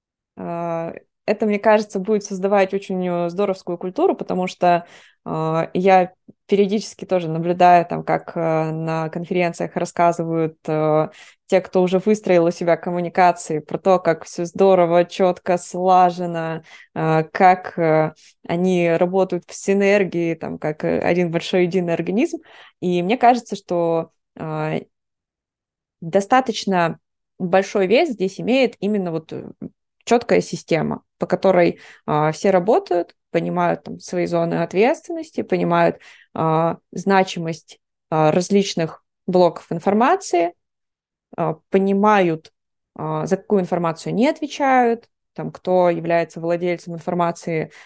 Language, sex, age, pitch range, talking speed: Russian, female, 20-39, 170-205 Hz, 100 wpm